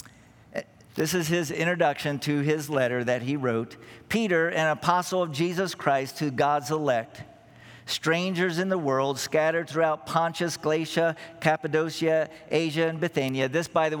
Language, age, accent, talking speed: English, 50-69, American, 145 wpm